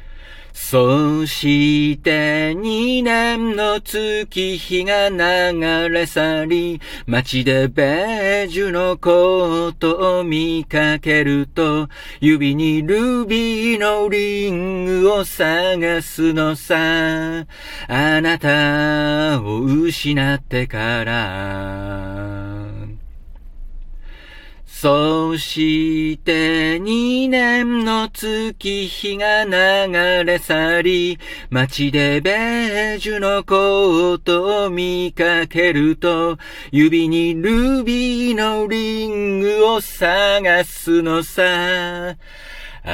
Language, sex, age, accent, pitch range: Japanese, male, 50-69, native, 145-195 Hz